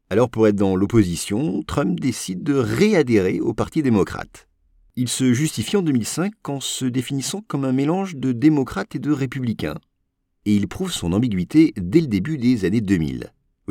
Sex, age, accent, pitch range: male, 50-69, French, 95-135 Hz